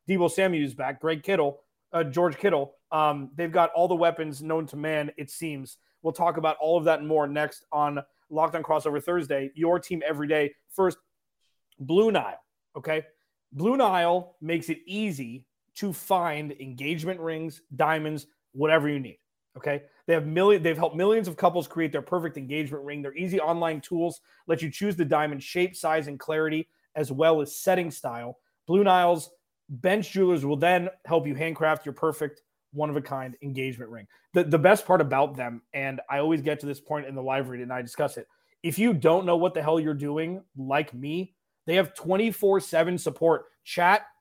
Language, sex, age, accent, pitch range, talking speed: English, male, 30-49, American, 150-180 Hz, 185 wpm